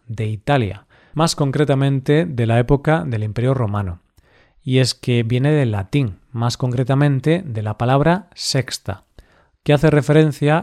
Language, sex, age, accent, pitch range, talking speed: Spanish, male, 40-59, Spanish, 115-145 Hz, 140 wpm